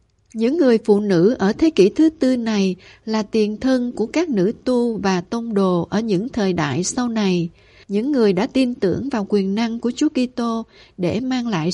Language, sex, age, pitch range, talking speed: Vietnamese, female, 60-79, 185-245 Hz, 205 wpm